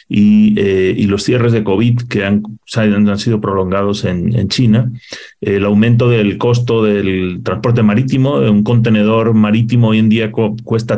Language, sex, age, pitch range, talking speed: Spanish, male, 40-59, 105-120 Hz, 165 wpm